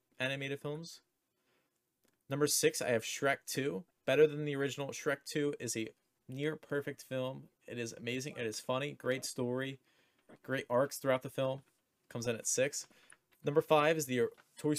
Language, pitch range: English, 115-150 Hz